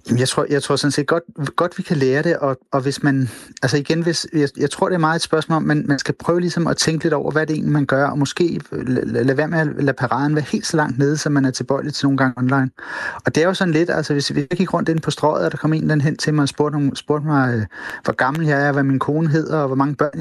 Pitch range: 140-160 Hz